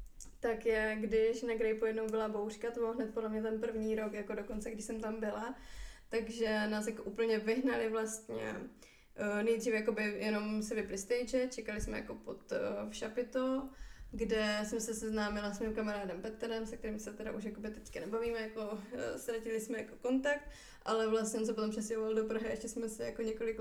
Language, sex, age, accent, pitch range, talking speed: Czech, female, 20-39, native, 220-240 Hz, 190 wpm